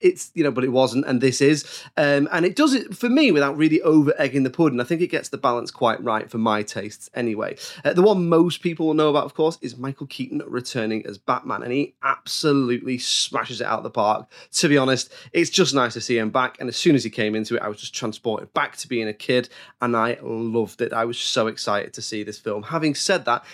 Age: 20-39